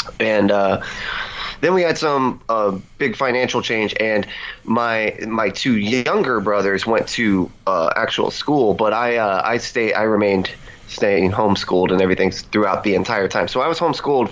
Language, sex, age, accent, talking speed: English, male, 20-39, American, 170 wpm